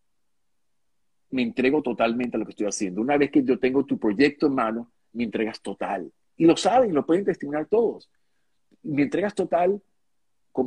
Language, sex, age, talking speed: Spanish, male, 50-69, 175 wpm